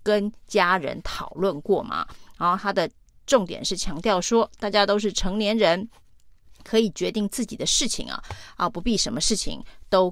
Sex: female